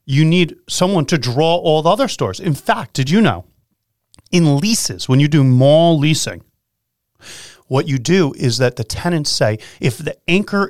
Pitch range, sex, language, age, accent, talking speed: 120-165 Hz, male, English, 30-49, American, 180 wpm